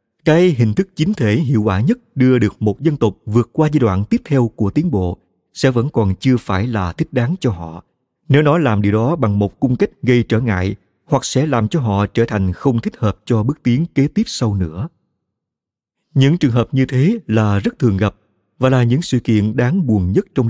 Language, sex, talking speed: Vietnamese, male, 230 wpm